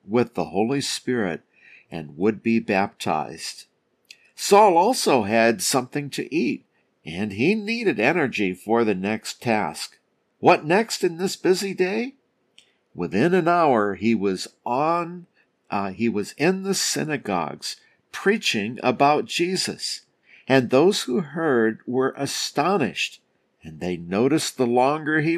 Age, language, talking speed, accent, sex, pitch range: 50-69, English, 130 wpm, American, male, 110-170 Hz